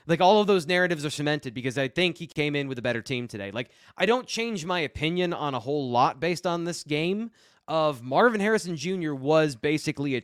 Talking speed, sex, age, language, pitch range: 230 wpm, male, 20-39, English, 135-185 Hz